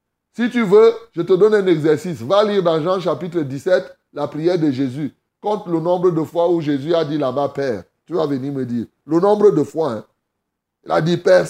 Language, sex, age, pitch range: French, male, 30-49, 155-205 Hz